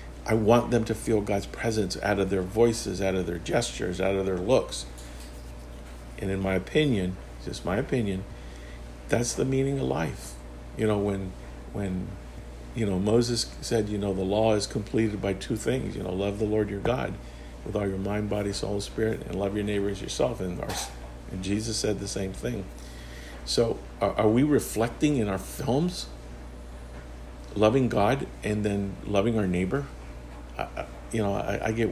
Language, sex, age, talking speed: English, male, 50-69, 180 wpm